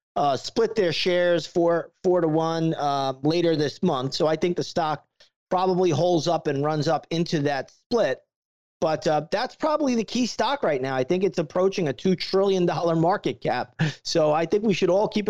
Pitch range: 155-195 Hz